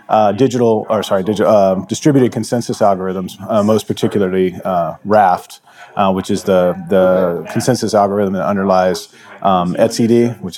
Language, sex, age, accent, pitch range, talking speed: English, male, 30-49, American, 100-125 Hz, 145 wpm